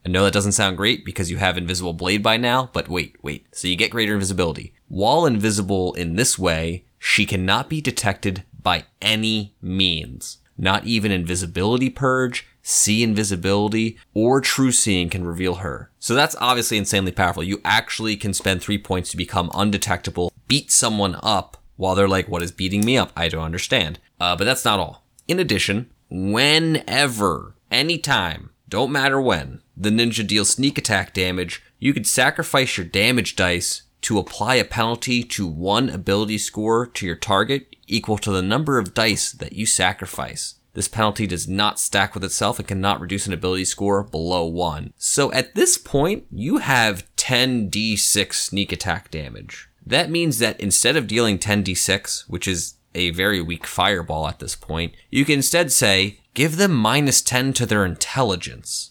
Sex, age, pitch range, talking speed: male, 20-39, 90-120 Hz, 170 wpm